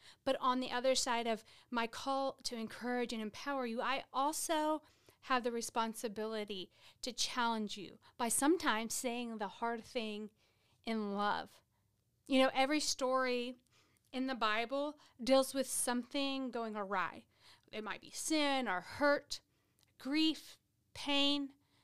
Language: English